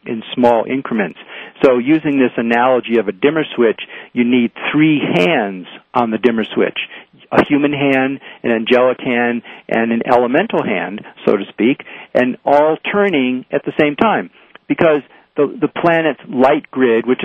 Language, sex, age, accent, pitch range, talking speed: English, male, 50-69, American, 120-150 Hz, 160 wpm